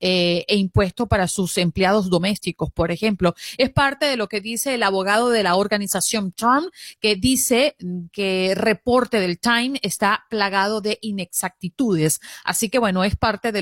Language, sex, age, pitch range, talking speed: Spanish, female, 30-49, 195-235 Hz, 165 wpm